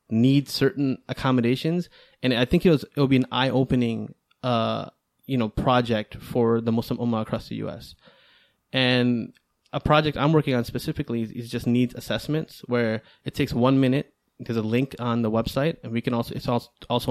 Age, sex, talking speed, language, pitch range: 20-39, male, 185 wpm, English, 115-130 Hz